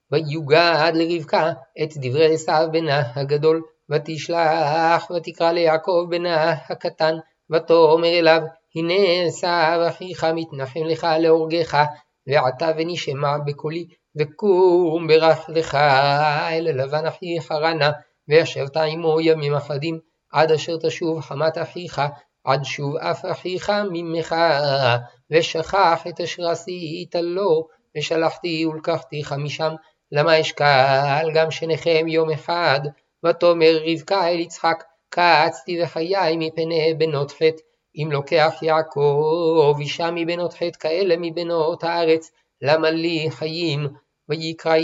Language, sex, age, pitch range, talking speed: Hebrew, male, 50-69, 155-170 Hz, 105 wpm